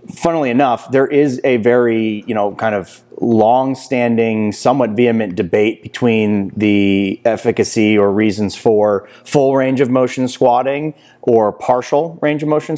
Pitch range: 105-125 Hz